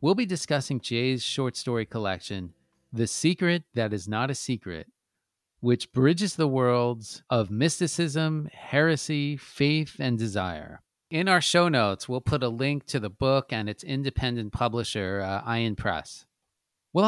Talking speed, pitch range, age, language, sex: 150 wpm, 110-140 Hz, 40-59, English, male